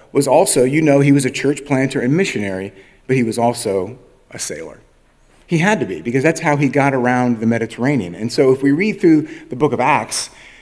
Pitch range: 120-165 Hz